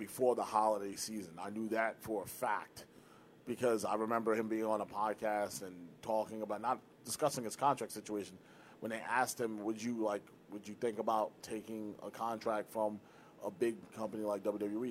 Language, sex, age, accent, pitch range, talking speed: English, male, 30-49, American, 105-120 Hz, 185 wpm